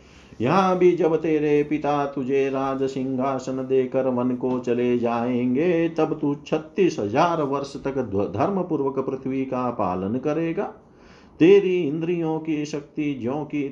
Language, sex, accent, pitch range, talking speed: Hindi, male, native, 120-150 Hz, 125 wpm